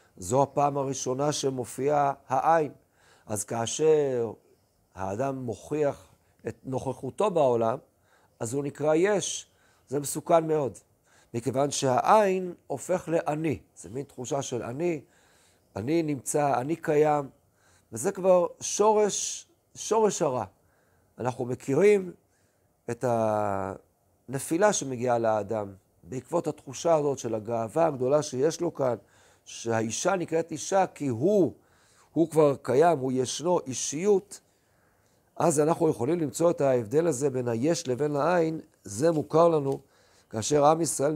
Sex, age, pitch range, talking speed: male, 50-69, 120-165 Hz, 115 wpm